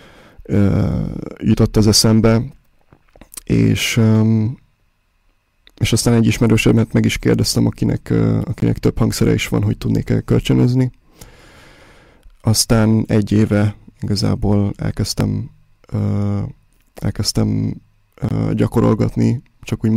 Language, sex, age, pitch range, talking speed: Hungarian, male, 20-39, 105-115 Hz, 85 wpm